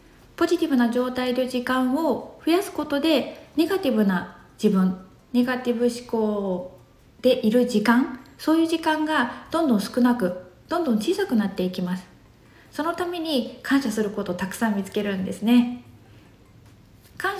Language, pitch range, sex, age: Japanese, 190-280 Hz, female, 20-39